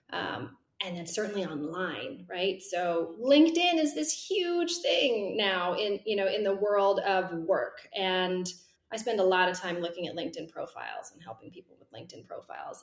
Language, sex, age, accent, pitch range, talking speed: English, female, 30-49, American, 200-275 Hz, 180 wpm